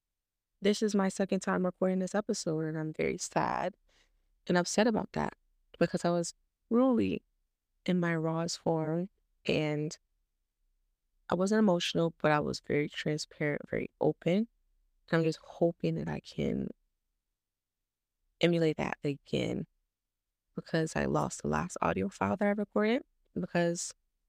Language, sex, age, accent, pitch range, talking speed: English, female, 20-39, American, 145-190 Hz, 140 wpm